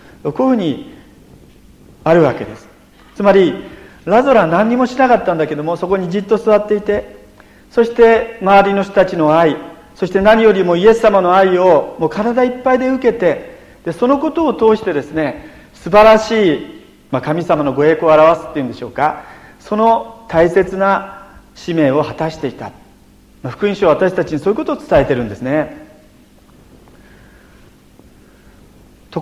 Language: Japanese